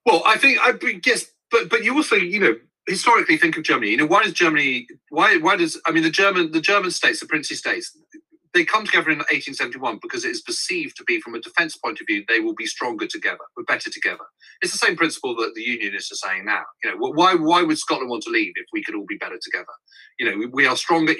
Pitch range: 300-375 Hz